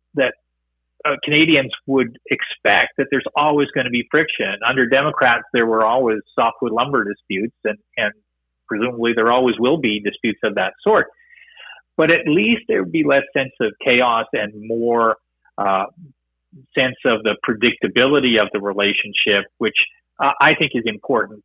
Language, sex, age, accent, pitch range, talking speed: English, male, 40-59, American, 100-135 Hz, 160 wpm